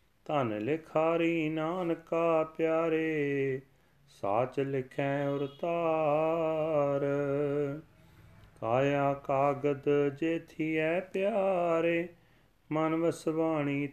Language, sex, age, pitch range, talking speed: Punjabi, male, 30-49, 120-155 Hz, 60 wpm